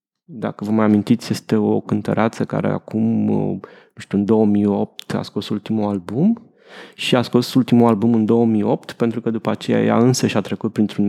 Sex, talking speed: male, 175 wpm